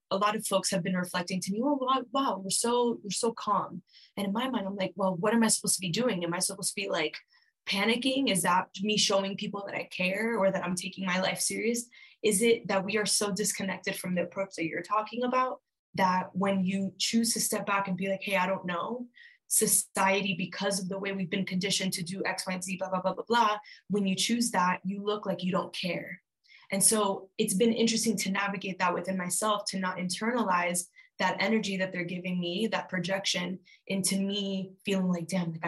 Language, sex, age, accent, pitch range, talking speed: English, female, 10-29, American, 185-220 Hz, 230 wpm